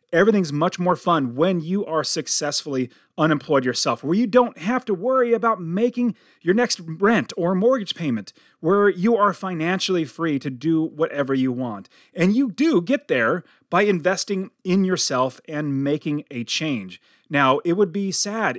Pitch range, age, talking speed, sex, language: 140-200 Hz, 30-49, 170 wpm, male, English